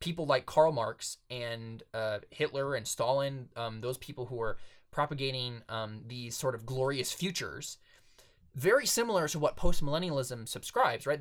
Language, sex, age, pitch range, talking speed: English, male, 20-39, 115-140 Hz, 150 wpm